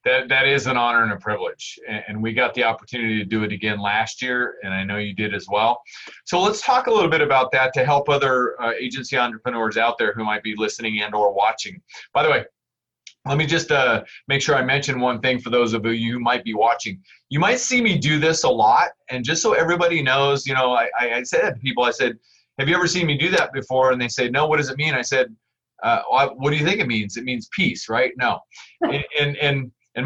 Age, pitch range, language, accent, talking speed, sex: 30-49, 115-145 Hz, English, American, 250 wpm, male